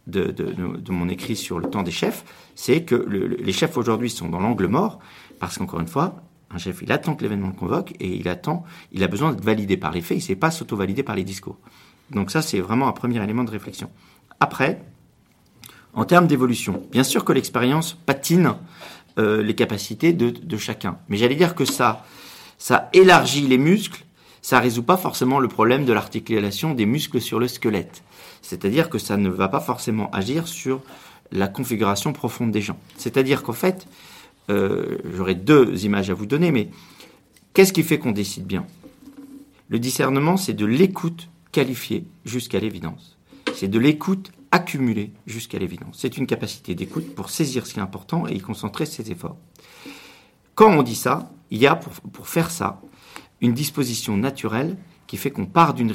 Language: French